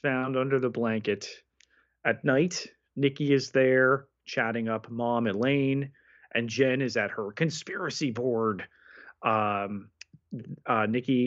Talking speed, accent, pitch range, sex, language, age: 120 wpm, American, 110-155 Hz, male, English, 30-49